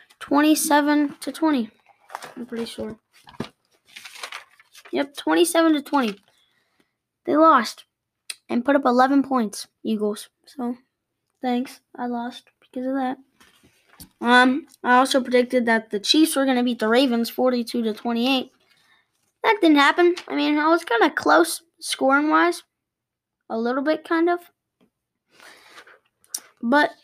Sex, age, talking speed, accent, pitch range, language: female, 10-29, 130 wpm, American, 230-295 Hz, English